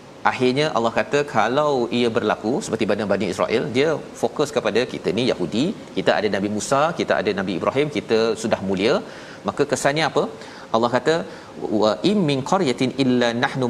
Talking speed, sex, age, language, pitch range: 160 wpm, male, 40-59, Malayalam, 110-135 Hz